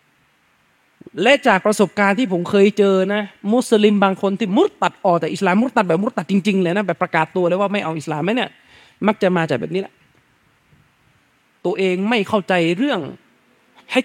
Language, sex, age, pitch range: Thai, male, 20-39, 185-255 Hz